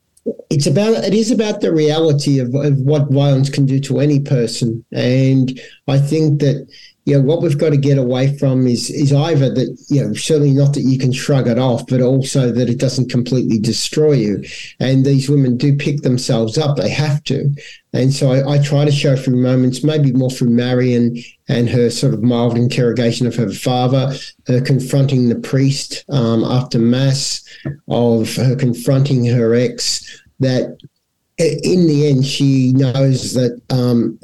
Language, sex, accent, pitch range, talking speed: English, male, Australian, 125-145 Hz, 180 wpm